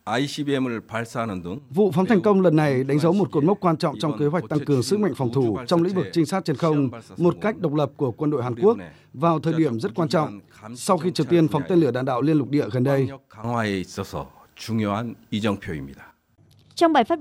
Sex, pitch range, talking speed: male, 170-245 Hz, 215 wpm